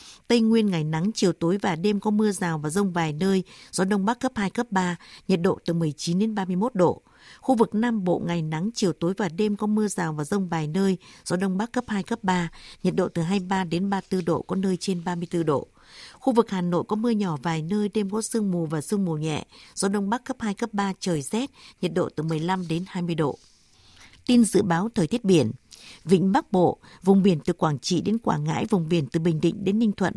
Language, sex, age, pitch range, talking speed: Vietnamese, female, 60-79, 170-215 Hz, 245 wpm